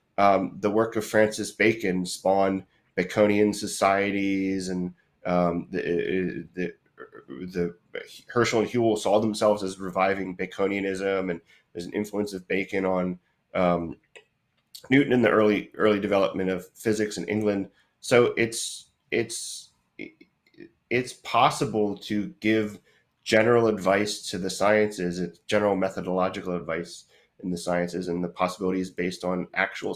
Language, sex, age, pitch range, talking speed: English, male, 30-49, 90-105 Hz, 130 wpm